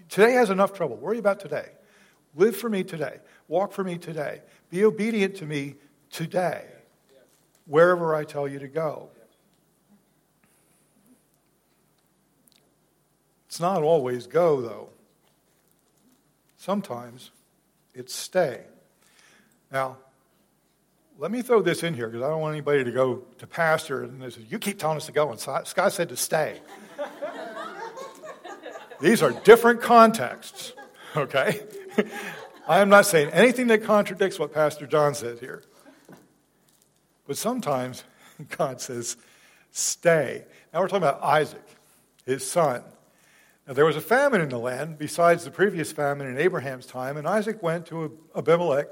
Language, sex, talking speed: English, male, 135 wpm